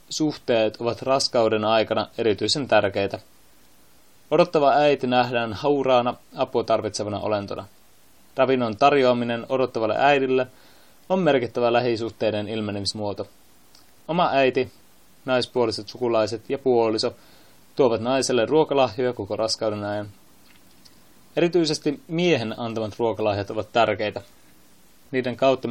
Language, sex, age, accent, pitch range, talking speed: Finnish, male, 20-39, native, 110-135 Hz, 95 wpm